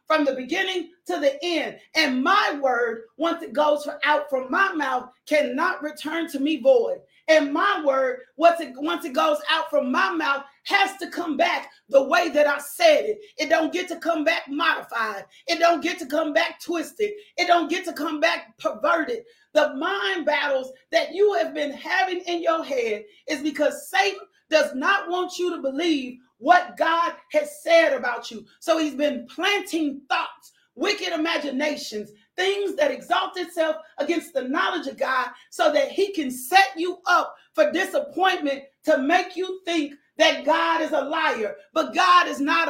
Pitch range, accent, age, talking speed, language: 285-350 Hz, American, 40-59, 180 wpm, English